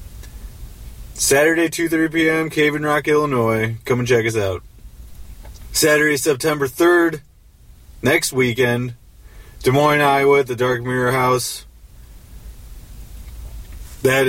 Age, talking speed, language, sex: 20-39, 110 wpm, English, male